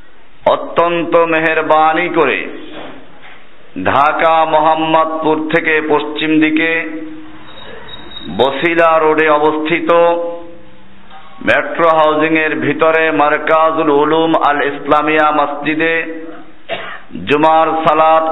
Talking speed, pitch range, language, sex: 70 wpm, 155-185 Hz, Bengali, male